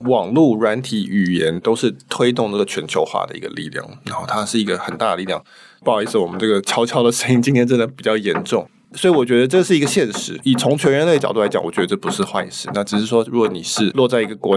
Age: 20-39